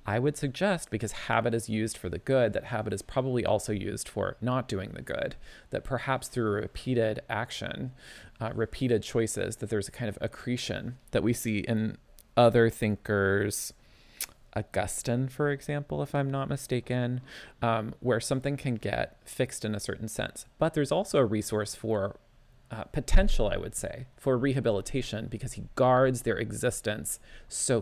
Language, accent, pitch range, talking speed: English, American, 110-130 Hz, 165 wpm